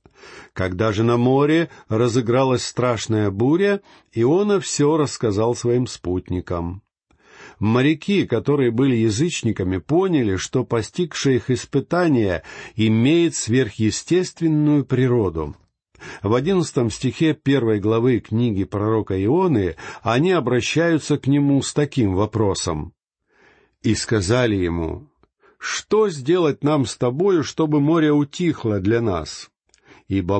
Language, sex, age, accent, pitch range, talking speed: Russian, male, 50-69, native, 105-150 Hz, 105 wpm